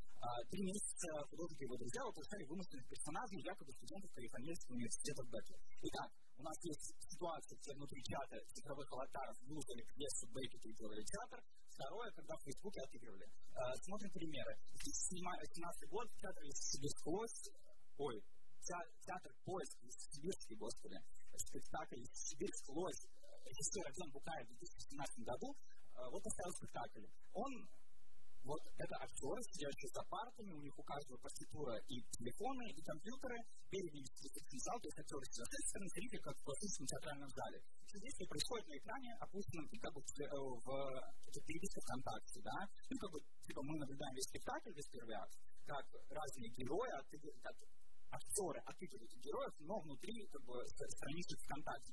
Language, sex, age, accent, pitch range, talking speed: Russian, male, 30-49, native, 135-195 Hz, 145 wpm